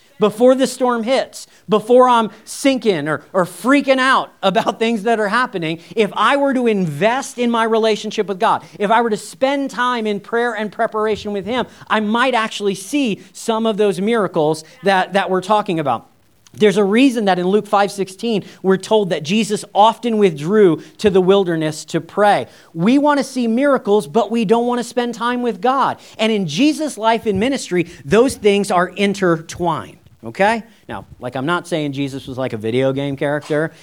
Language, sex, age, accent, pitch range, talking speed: English, male, 40-59, American, 165-235 Hz, 190 wpm